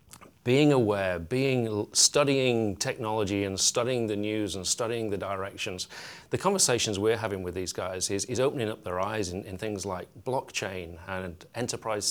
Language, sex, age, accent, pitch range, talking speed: English, male, 40-59, British, 100-130 Hz, 165 wpm